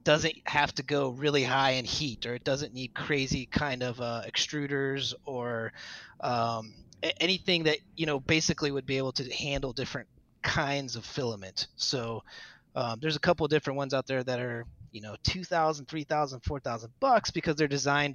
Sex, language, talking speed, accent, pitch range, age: male, English, 190 wpm, American, 115-145 Hz, 30-49